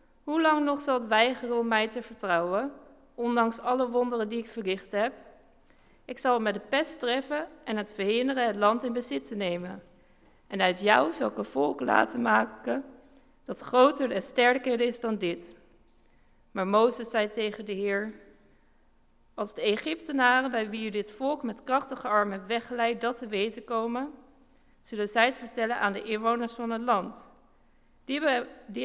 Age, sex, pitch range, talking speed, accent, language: 40-59, female, 215-255 Hz, 170 wpm, Dutch, English